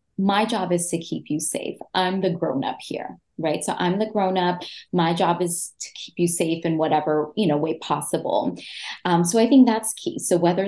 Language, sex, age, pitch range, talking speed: English, female, 20-39, 165-215 Hz, 220 wpm